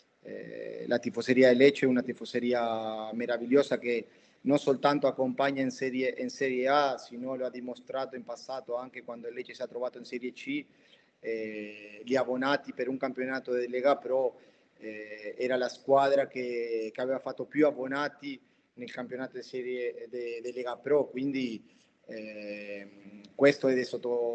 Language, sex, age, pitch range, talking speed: Italian, male, 30-49, 120-140 Hz, 165 wpm